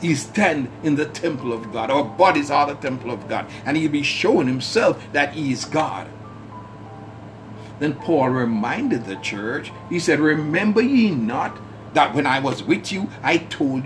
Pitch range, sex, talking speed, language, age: 110-160 Hz, male, 180 wpm, English, 60-79